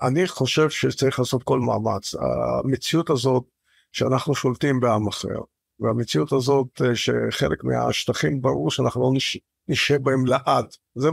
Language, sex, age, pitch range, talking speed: Hebrew, male, 50-69, 125-155 Hz, 130 wpm